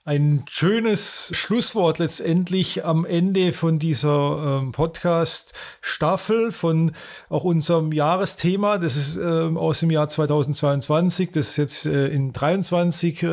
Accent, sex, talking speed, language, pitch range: German, male, 105 wpm, German, 145-175 Hz